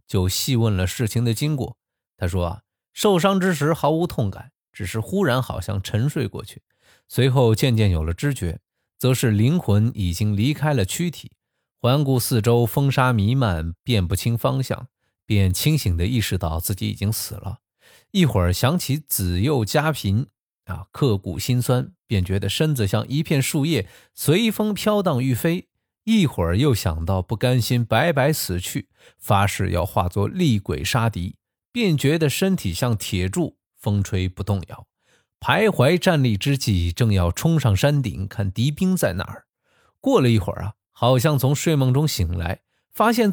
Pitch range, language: 100-145 Hz, Chinese